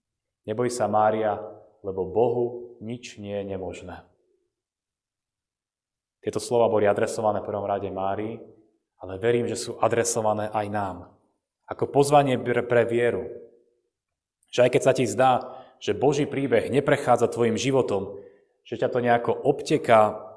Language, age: Slovak, 30-49